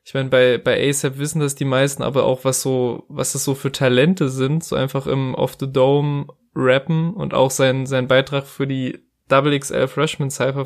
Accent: German